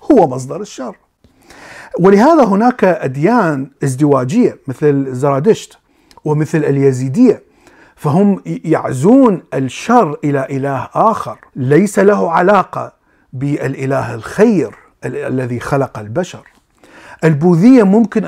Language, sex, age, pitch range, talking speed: Arabic, male, 50-69, 140-185 Hz, 90 wpm